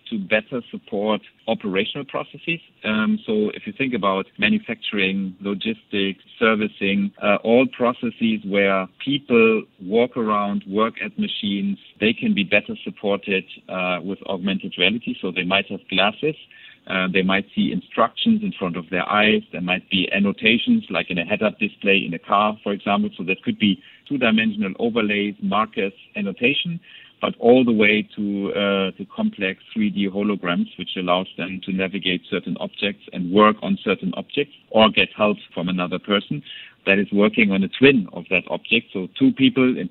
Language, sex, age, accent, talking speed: English, male, 50-69, German, 170 wpm